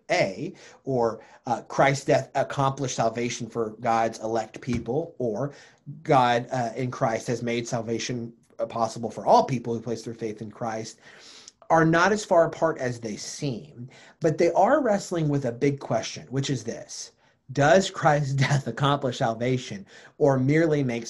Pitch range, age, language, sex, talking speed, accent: 115-155 Hz, 30-49, English, male, 160 wpm, American